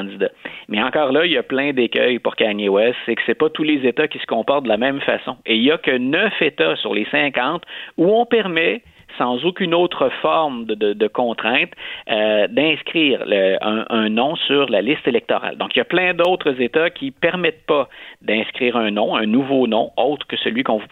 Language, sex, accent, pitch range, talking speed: French, male, Canadian, 110-155 Hz, 225 wpm